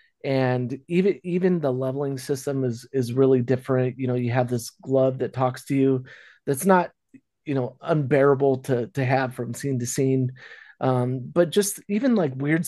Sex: male